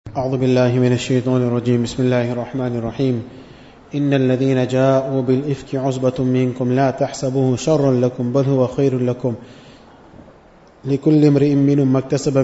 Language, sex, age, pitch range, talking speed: English, male, 20-39, 130-150 Hz, 130 wpm